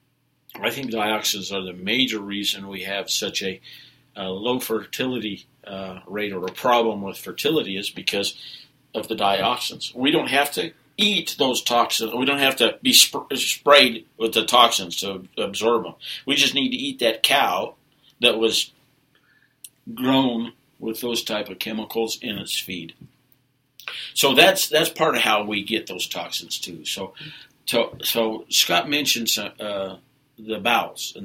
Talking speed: 165 wpm